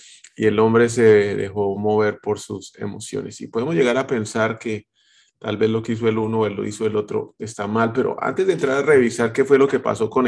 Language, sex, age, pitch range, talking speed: Spanish, male, 30-49, 110-135 Hz, 240 wpm